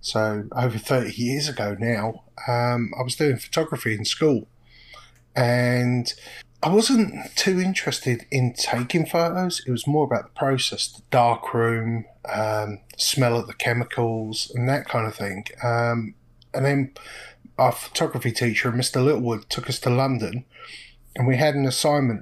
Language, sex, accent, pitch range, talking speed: English, male, British, 120-135 Hz, 155 wpm